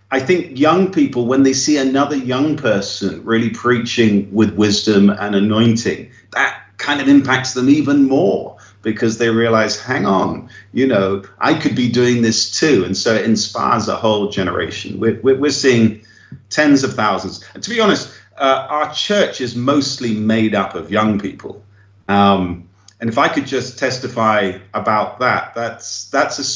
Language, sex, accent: English, male, British